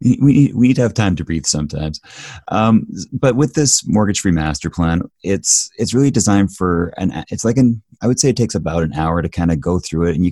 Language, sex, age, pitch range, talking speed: English, male, 30-49, 75-100 Hz, 235 wpm